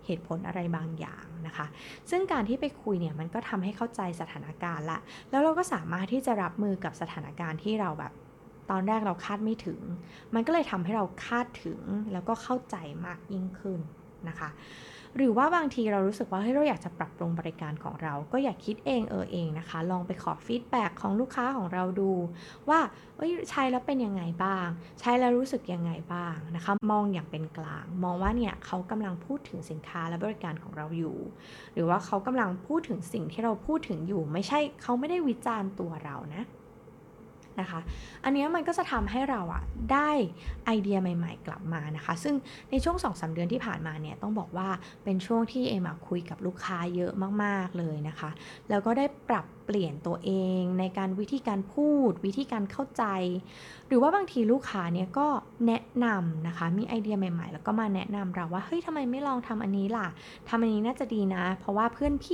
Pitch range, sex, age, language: 175-240 Hz, female, 20-39, Thai